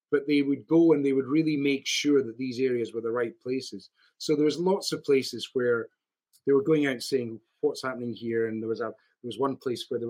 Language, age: English, 40-59